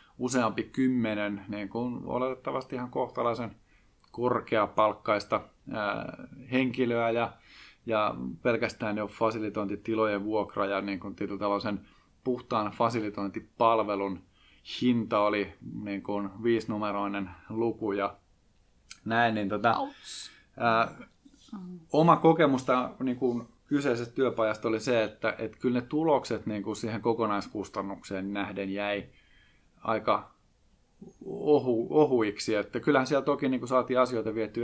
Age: 20-39